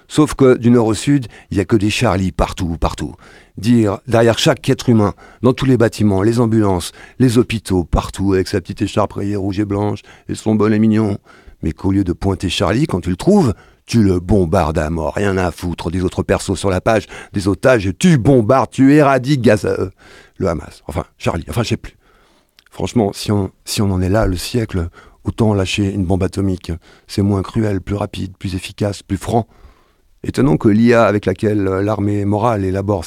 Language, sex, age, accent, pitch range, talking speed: French, male, 50-69, French, 90-110 Hz, 200 wpm